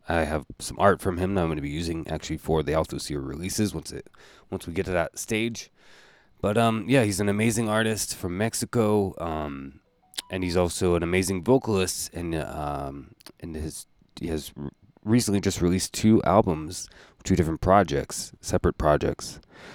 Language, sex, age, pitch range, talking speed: English, male, 20-39, 75-95 Hz, 175 wpm